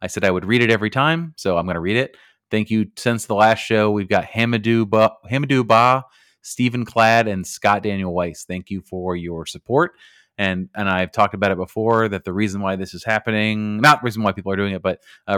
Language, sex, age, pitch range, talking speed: English, male, 30-49, 95-110 Hz, 225 wpm